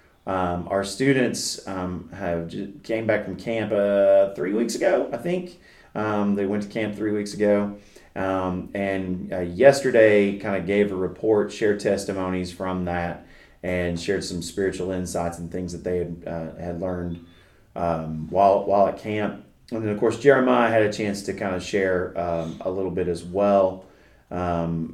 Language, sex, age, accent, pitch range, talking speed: English, male, 30-49, American, 85-105 Hz, 175 wpm